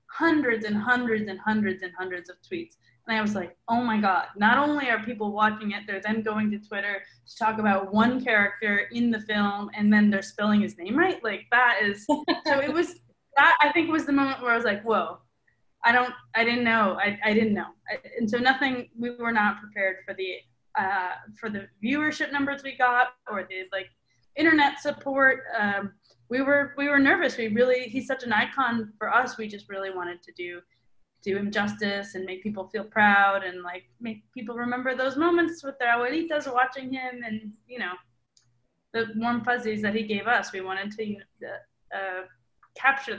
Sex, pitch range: female, 200-255 Hz